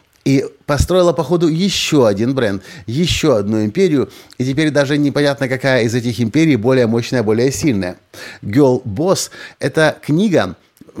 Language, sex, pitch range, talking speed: Russian, male, 115-155 Hz, 140 wpm